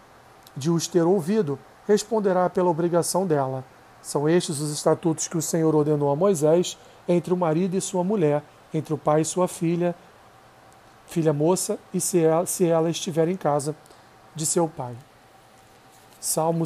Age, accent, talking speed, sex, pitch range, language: 40-59, Brazilian, 155 wpm, male, 155-180 Hz, Portuguese